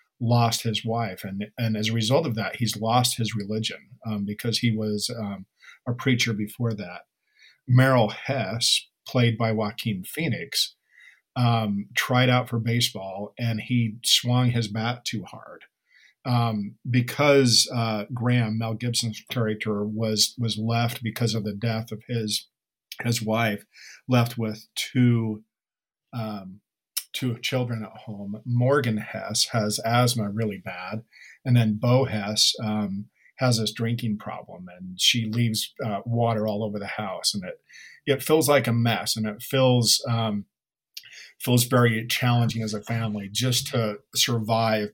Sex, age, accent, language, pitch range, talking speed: male, 50-69, American, English, 110-120 Hz, 150 wpm